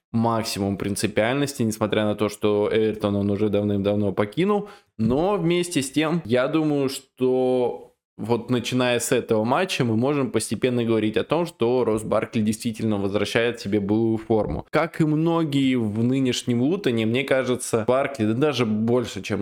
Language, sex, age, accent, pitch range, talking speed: Russian, male, 20-39, native, 105-130 Hz, 150 wpm